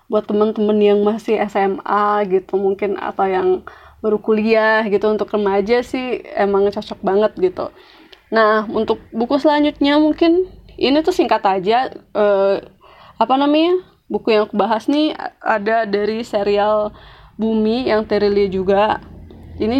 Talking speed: 135 wpm